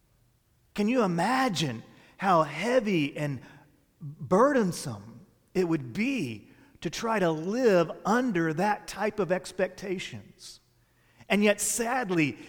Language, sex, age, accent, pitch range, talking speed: English, male, 40-59, American, 135-190 Hz, 105 wpm